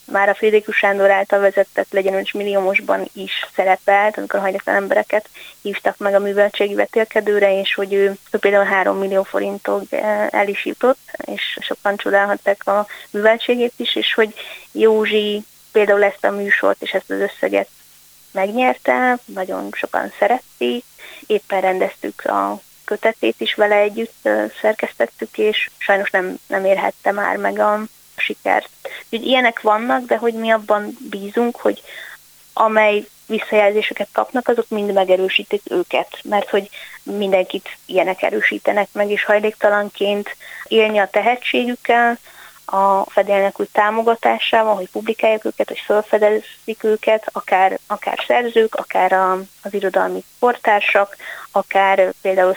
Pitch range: 195-220 Hz